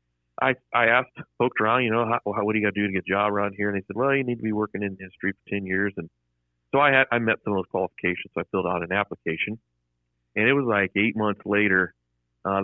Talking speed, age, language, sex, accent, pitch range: 280 wpm, 40-59, English, male, American, 85-100 Hz